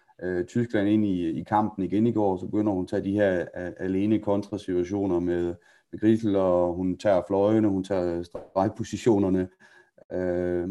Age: 30-49